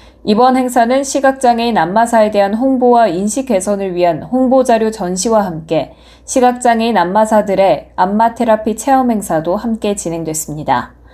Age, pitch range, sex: 20-39, 190-240 Hz, female